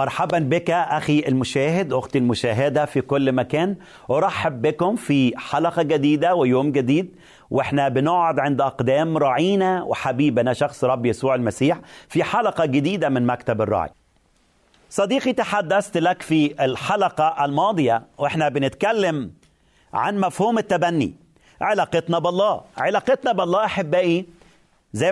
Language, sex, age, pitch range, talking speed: Arabic, male, 40-59, 140-185 Hz, 115 wpm